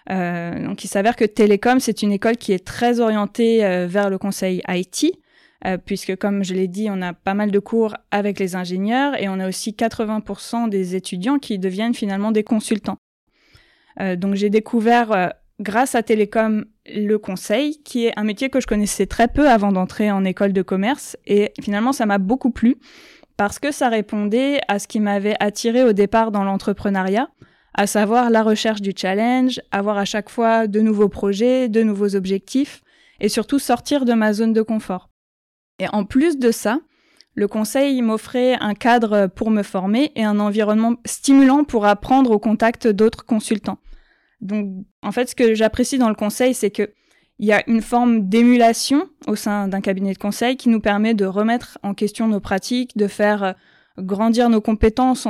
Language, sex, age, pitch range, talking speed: French, female, 20-39, 200-240 Hz, 185 wpm